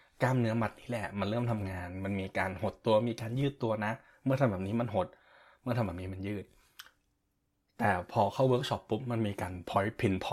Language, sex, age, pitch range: Thai, male, 20-39, 100-120 Hz